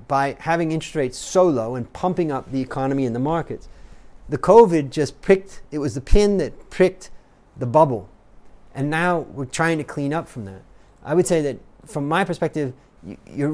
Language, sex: Thai, male